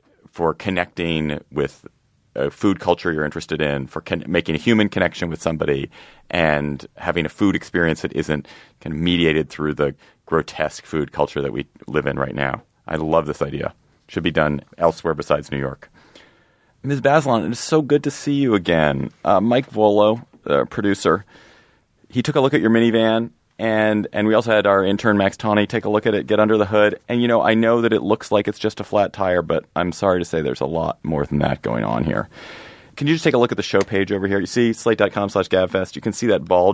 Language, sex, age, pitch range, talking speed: English, male, 30-49, 90-115 Hz, 225 wpm